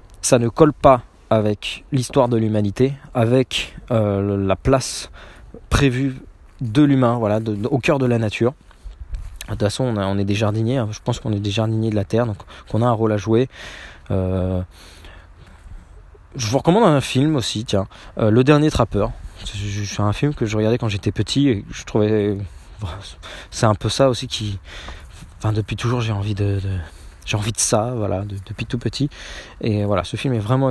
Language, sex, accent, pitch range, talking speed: French, male, French, 95-120 Hz, 195 wpm